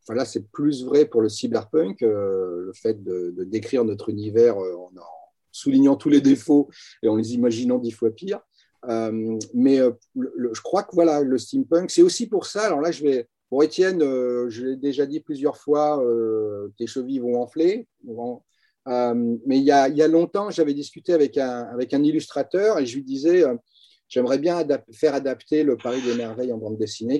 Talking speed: 210 wpm